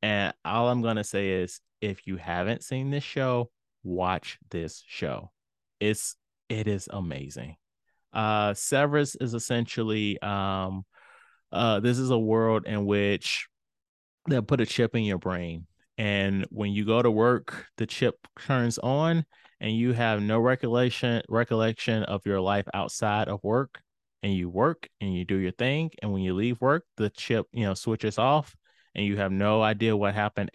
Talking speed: 170 wpm